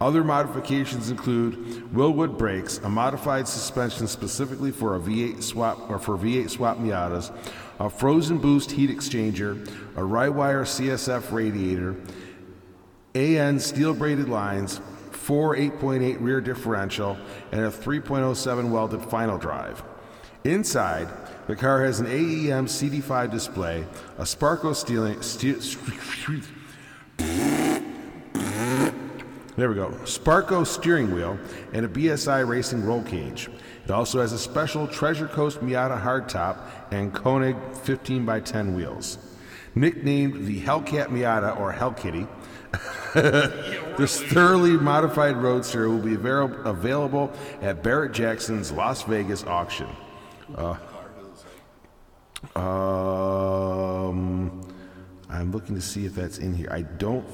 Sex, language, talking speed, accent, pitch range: male, English, 120 wpm, American, 100-135 Hz